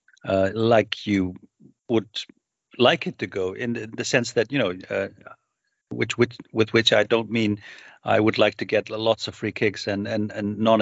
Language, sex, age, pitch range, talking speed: English, male, 50-69, 100-115 Hz, 200 wpm